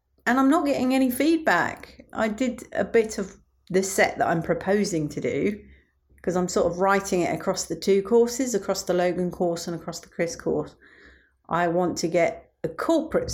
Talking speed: 195 wpm